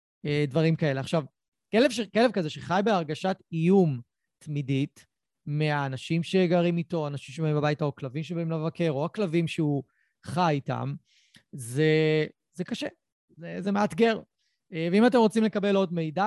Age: 30-49